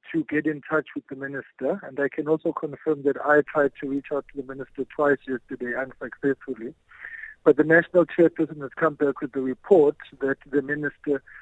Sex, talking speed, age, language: male, 195 wpm, 50-69, English